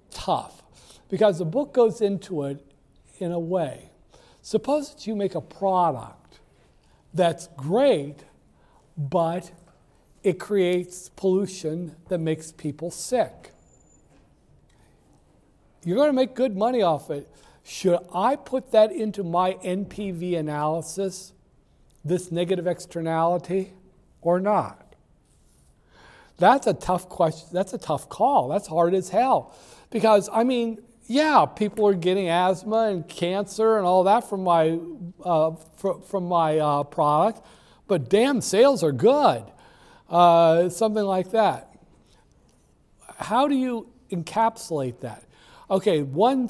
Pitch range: 170-210 Hz